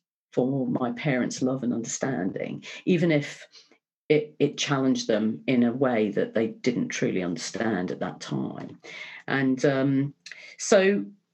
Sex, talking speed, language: female, 140 wpm, English